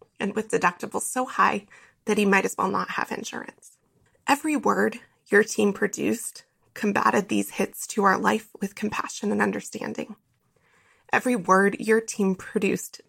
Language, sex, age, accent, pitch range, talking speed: English, female, 20-39, American, 195-220 Hz, 150 wpm